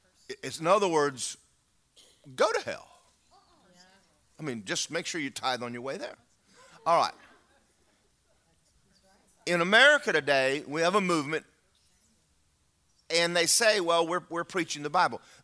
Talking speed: 140 wpm